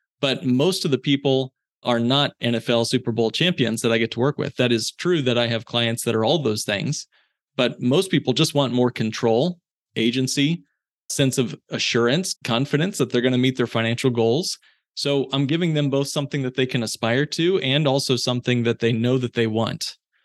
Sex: male